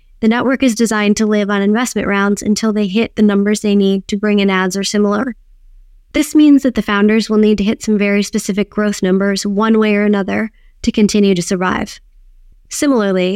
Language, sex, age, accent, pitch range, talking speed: English, female, 20-39, American, 195-230 Hz, 200 wpm